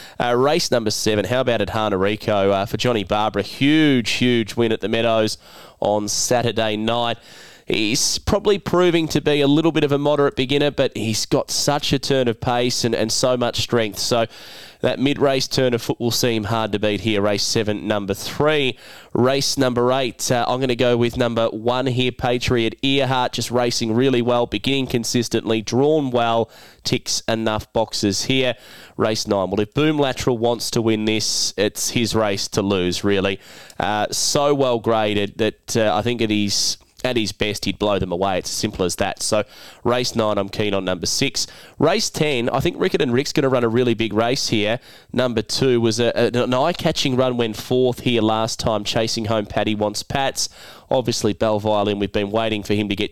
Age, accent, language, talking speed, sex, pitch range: 20-39, Australian, English, 200 wpm, male, 105-130 Hz